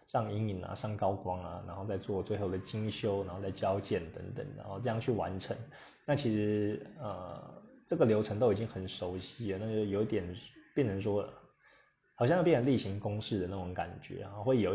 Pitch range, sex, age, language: 95-120 Hz, male, 20-39, Chinese